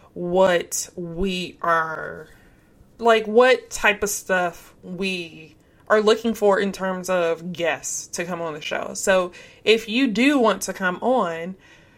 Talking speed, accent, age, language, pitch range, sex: 145 wpm, American, 20-39, English, 185-235 Hz, female